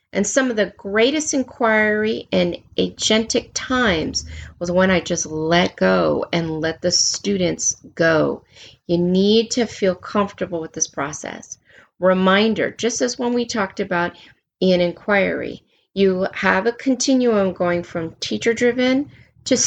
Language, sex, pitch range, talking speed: English, female, 175-245 Hz, 145 wpm